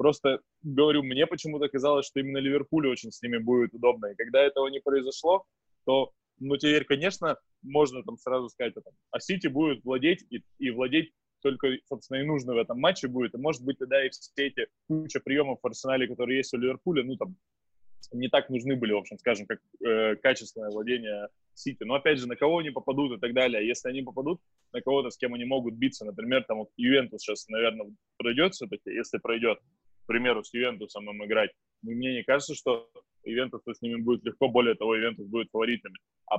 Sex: male